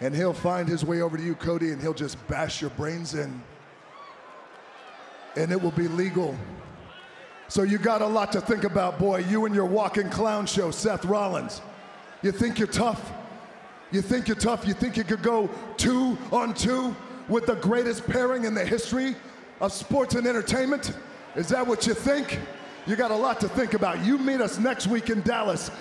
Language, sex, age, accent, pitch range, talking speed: English, male, 40-59, American, 165-220 Hz, 195 wpm